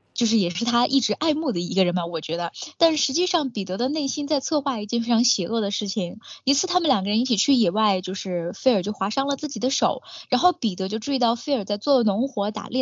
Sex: female